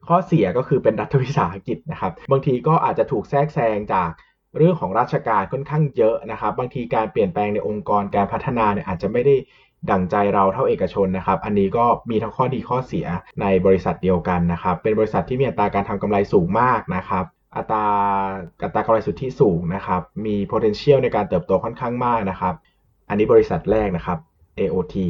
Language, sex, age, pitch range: Thai, male, 20-39, 100-145 Hz